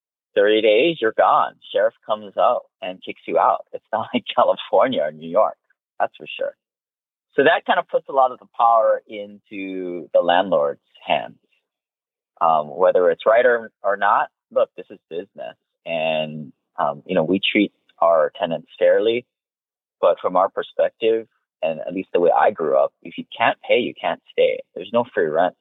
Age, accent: 30-49, American